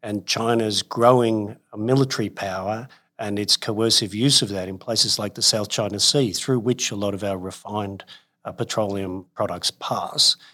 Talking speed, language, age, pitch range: 160 wpm, English, 50-69, 100-125 Hz